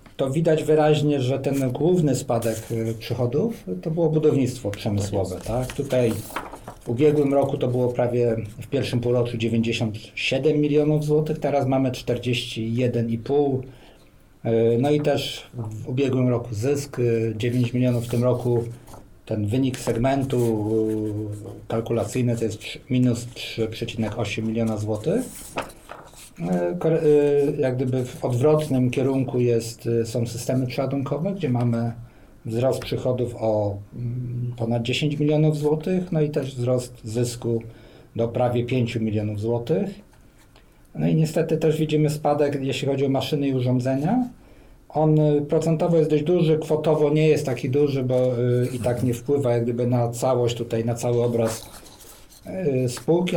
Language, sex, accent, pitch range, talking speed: Polish, male, native, 115-145 Hz, 130 wpm